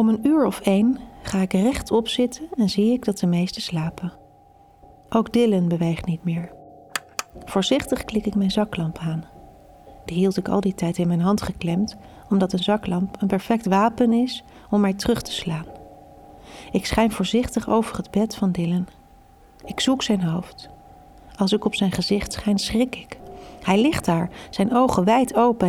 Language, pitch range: Dutch, 180-230 Hz